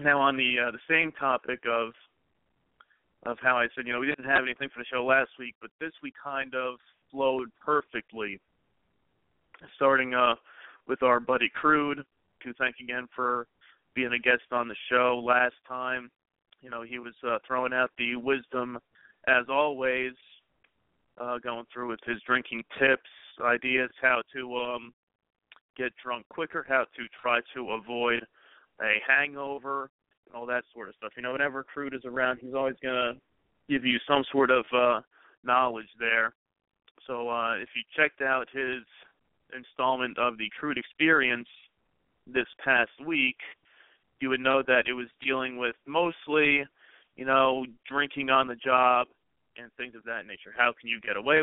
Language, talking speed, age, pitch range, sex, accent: English, 165 wpm, 40-59, 120-135 Hz, male, American